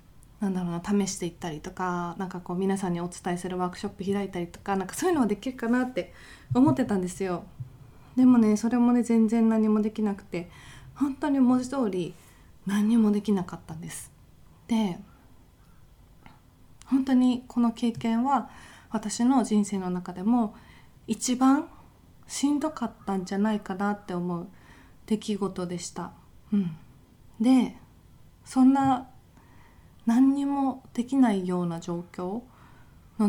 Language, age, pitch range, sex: Japanese, 20-39, 180-235 Hz, female